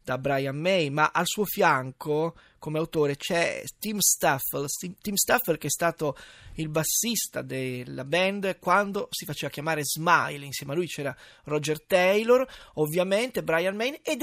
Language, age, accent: Italian, 20-39, native